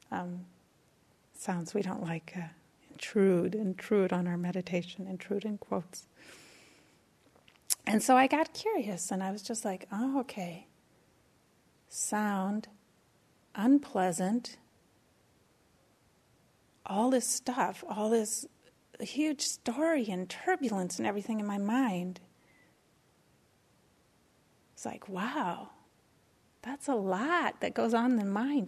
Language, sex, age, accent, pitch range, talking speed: English, female, 40-59, American, 190-255 Hz, 115 wpm